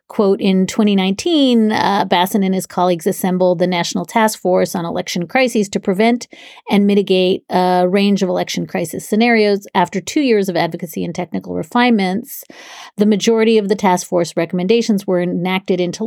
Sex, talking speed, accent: female, 165 wpm, American